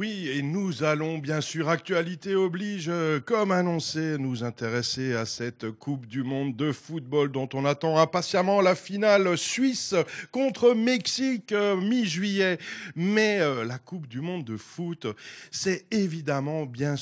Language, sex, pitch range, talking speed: French, male, 140-205 Hz, 150 wpm